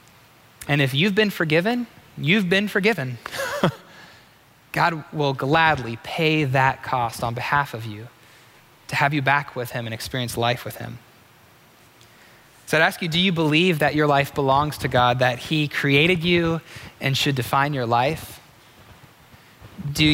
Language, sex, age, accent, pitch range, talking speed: English, male, 20-39, American, 120-145 Hz, 155 wpm